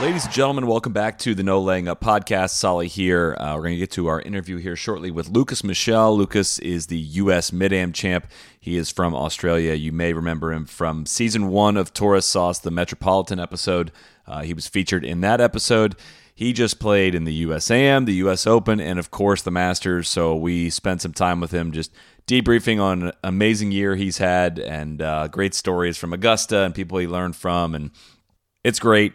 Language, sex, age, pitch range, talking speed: English, male, 30-49, 85-110 Hz, 205 wpm